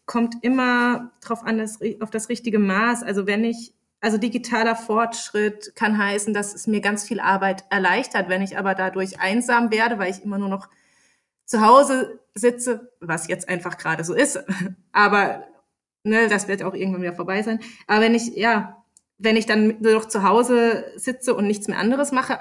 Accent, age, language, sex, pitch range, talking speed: German, 20-39, German, female, 190-230 Hz, 185 wpm